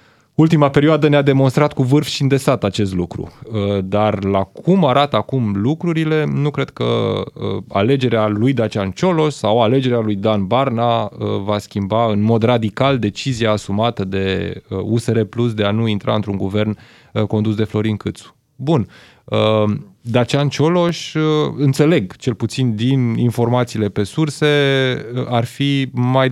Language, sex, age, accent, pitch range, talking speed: Romanian, male, 20-39, native, 110-135 Hz, 140 wpm